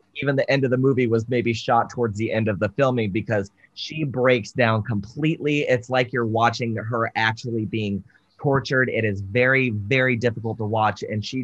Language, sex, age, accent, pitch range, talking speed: English, male, 20-39, American, 105-125 Hz, 195 wpm